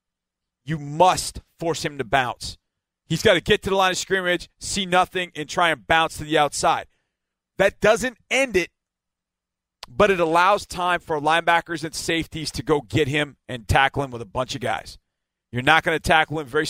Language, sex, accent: English, male, American